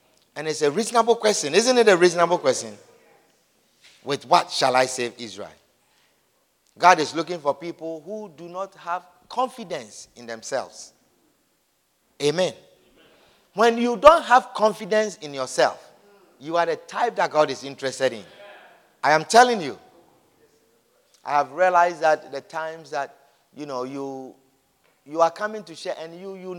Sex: male